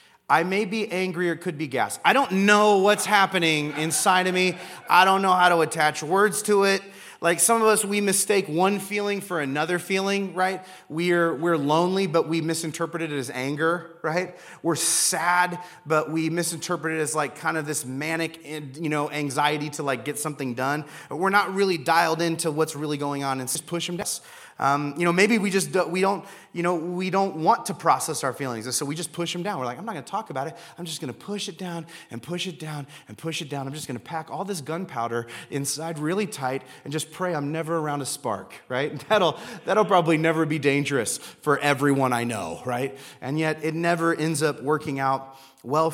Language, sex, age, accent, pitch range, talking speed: English, male, 30-49, American, 150-185 Hz, 220 wpm